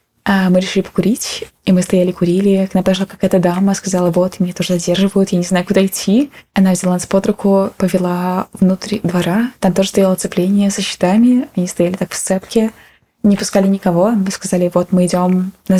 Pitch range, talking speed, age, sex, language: 185-205 Hz, 190 wpm, 20-39, female, Russian